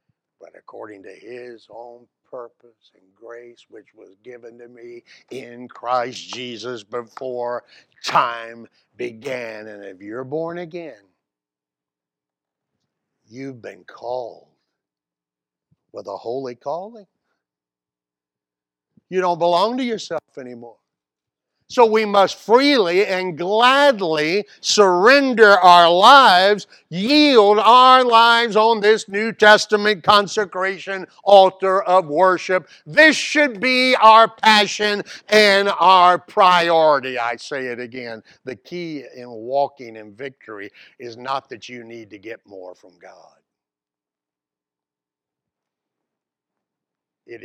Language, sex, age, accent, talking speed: English, male, 60-79, American, 110 wpm